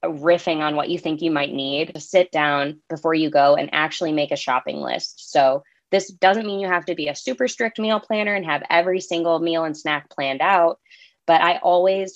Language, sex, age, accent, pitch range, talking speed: English, female, 20-39, American, 145-180 Hz, 220 wpm